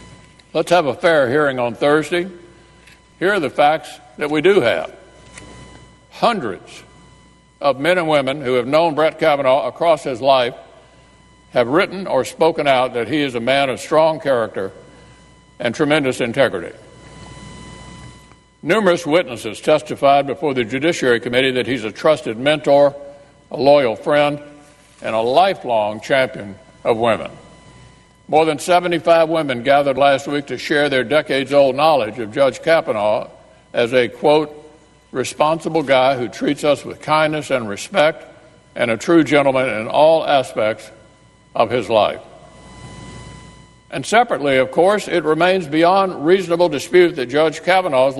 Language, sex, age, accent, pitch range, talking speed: English, male, 60-79, American, 130-155 Hz, 140 wpm